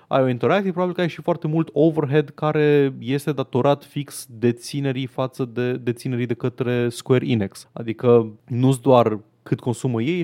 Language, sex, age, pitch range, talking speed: Romanian, male, 20-39, 115-140 Hz, 170 wpm